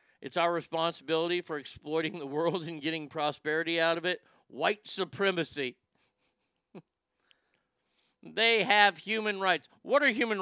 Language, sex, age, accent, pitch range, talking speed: English, male, 50-69, American, 155-195 Hz, 125 wpm